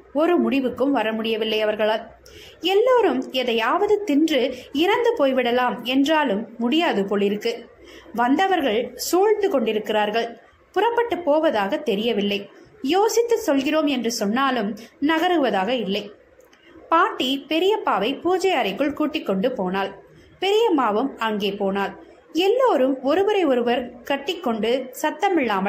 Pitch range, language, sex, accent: 235-350 Hz, Tamil, female, native